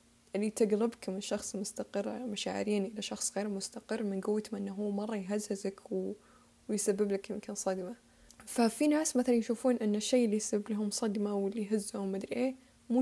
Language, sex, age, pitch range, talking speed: Arabic, female, 10-29, 195-230 Hz, 170 wpm